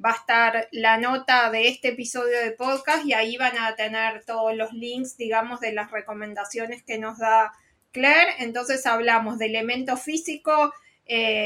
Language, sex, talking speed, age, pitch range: Spanish, female, 170 wpm, 20-39, 225-255 Hz